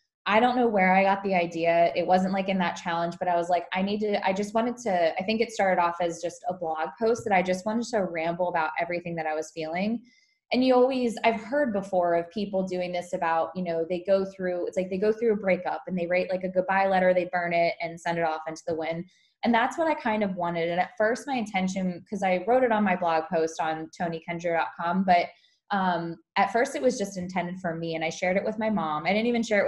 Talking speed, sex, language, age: 265 wpm, female, English, 20-39